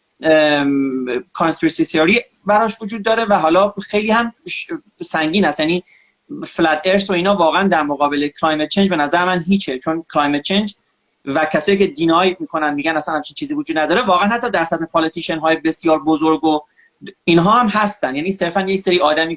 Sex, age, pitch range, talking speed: male, 30-49, 160-225 Hz, 175 wpm